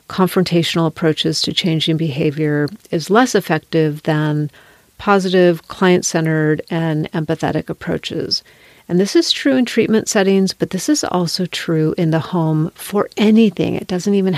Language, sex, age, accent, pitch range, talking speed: English, female, 40-59, American, 160-205 Hz, 140 wpm